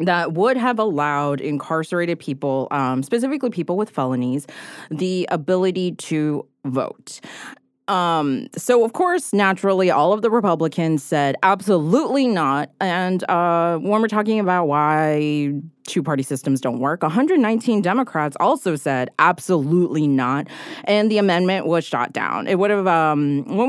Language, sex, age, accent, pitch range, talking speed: English, female, 30-49, American, 150-220 Hz, 140 wpm